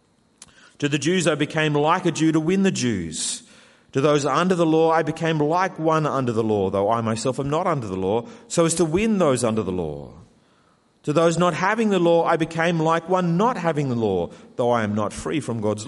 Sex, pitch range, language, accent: male, 110-180 Hz, English, Australian